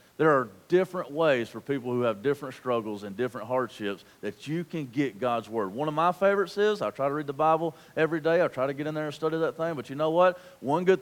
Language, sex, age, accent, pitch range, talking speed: English, male, 40-59, American, 130-170 Hz, 260 wpm